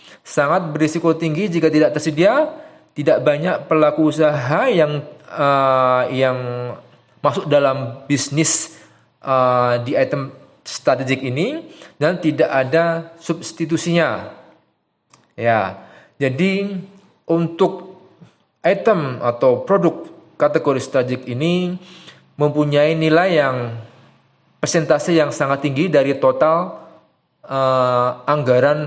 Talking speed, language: 95 wpm, Indonesian